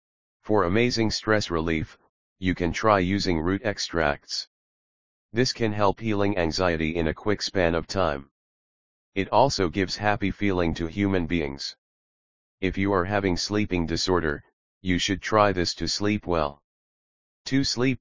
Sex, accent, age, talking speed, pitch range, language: male, American, 40-59, 145 wpm, 80-100 Hz, English